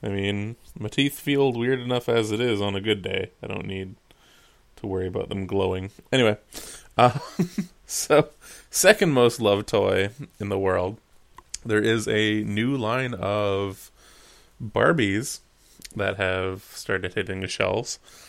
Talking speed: 150 wpm